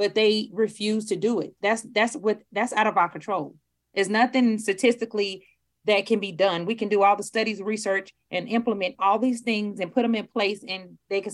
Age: 30-49